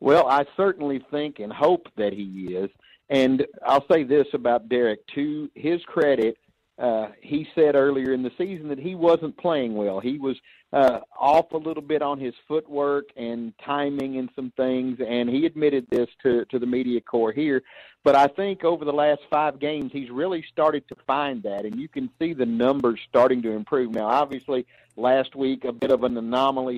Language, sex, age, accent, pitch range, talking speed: English, male, 50-69, American, 120-145 Hz, 195 wpm